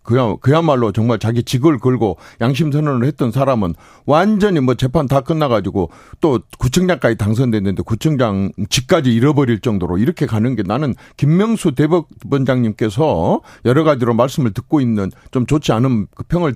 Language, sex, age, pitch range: Korean, male, 50-69, 105-150 Hz